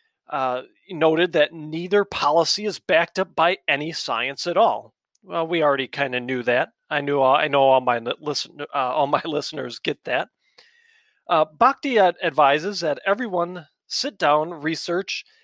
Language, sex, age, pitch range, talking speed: English, male, 40-59, 145-205 Hz, 170 wpm